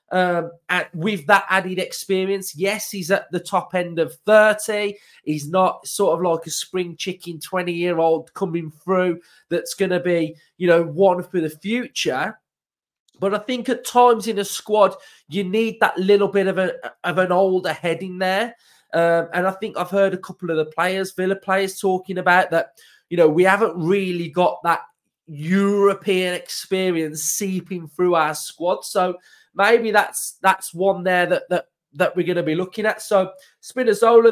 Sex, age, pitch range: male, 20-39, 175-200 Hz